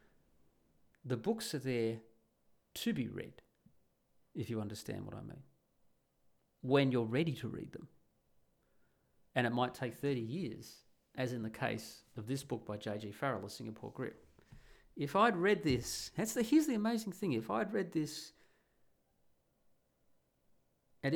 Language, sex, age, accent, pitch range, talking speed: English, male, 40-59, Australian, 110-140 Hz, 150 wpm